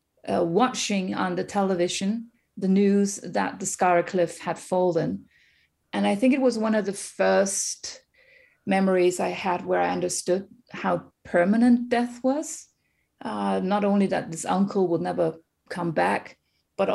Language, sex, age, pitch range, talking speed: English, female, 30-49, 175-215 Hz, 150 wpm